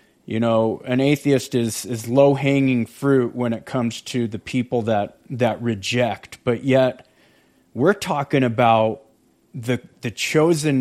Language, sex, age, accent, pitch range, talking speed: English, male, 30-49, American, 125-150 Hz, 145 wpm